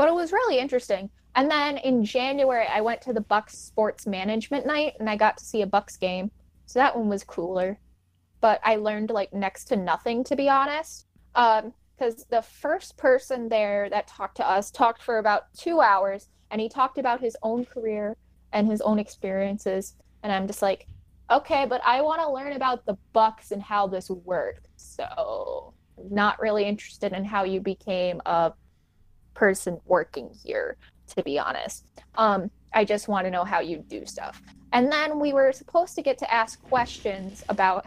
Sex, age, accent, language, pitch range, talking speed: female, 10-29, American, English, 195-255 Hz, 190 wpm